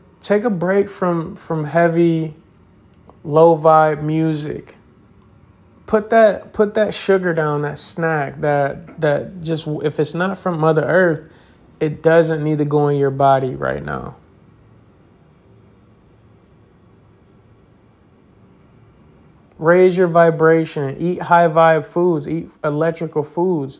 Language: English